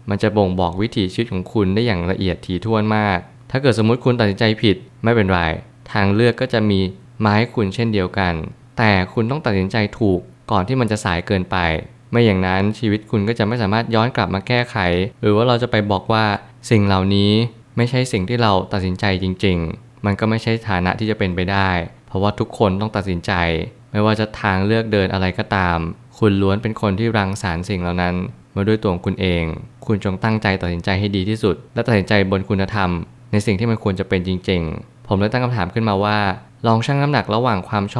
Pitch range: 95-115 Hz